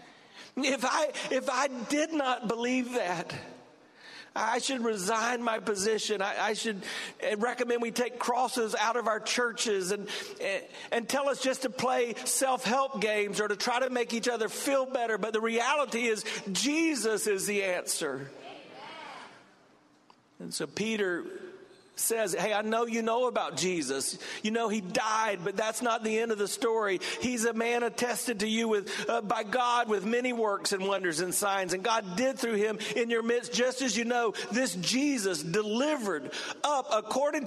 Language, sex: English, male